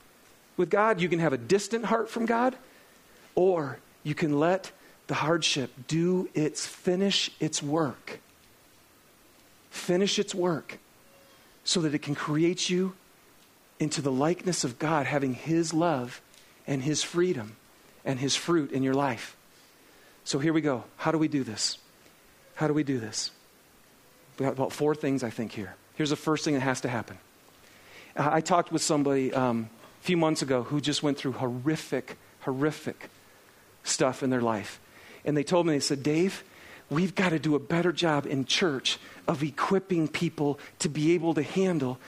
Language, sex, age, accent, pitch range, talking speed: English, male, 40-59, American, 140-180 Hz, 170 wpm